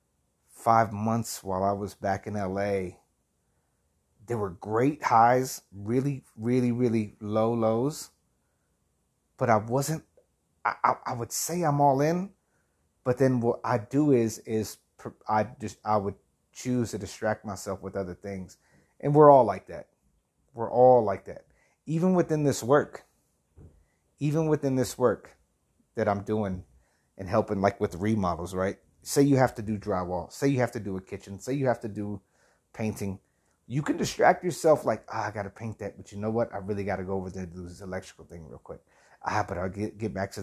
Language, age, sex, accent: English, 30-49, male, American